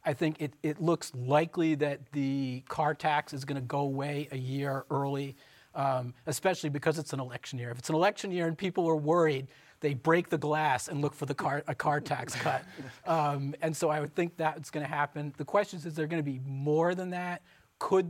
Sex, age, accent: male, 40-59, American